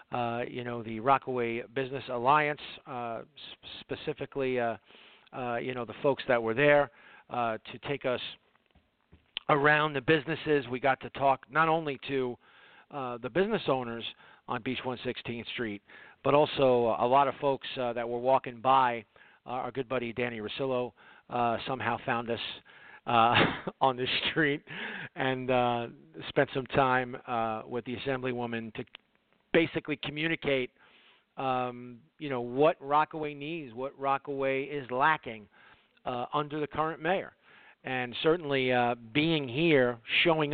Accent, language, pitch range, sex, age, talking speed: American, English, 120-145 Hz, male, 40-59, 145 wpm